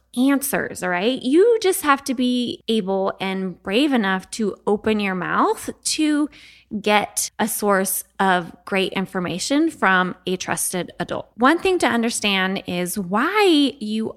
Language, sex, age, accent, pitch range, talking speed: English, female, 20-39, American, 190-275 Hz, 145 wpm